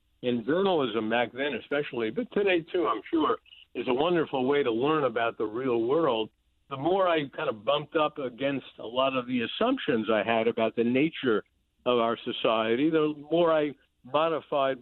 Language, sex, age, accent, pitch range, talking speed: English, male, 60-79, American, 115-150 Hz, 180 wpm